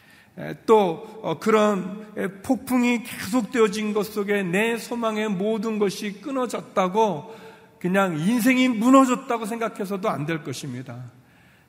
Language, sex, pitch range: Korean, male, 160-225 Hz